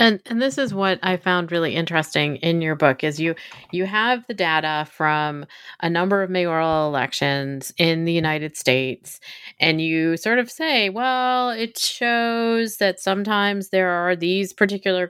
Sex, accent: female, American